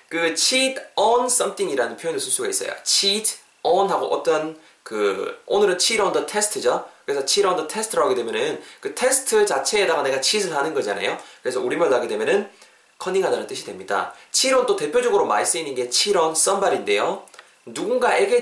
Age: 20-39